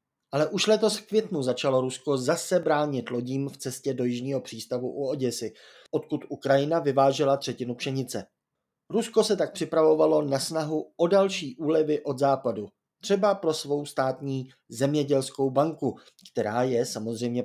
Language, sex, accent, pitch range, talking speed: Czech, male, native, 125-165 Hz, 145 wpm